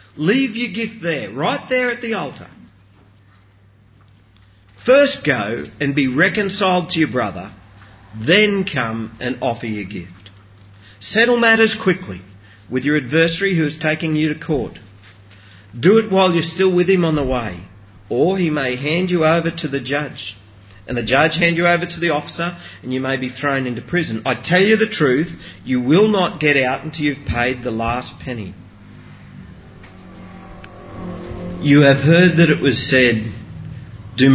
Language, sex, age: English, male, 40-59